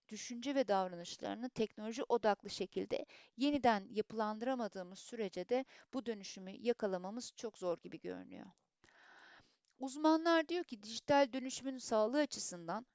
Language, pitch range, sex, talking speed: Turkish, 210-270 Hz, female, 110 wpm